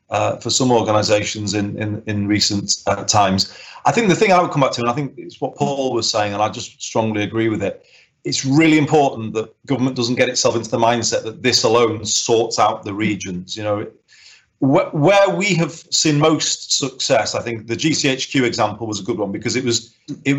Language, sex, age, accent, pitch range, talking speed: English, male, 30-49, British, 110-130 Hz, 215 wpm